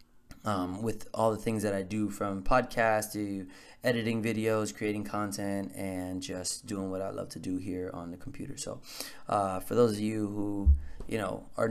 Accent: American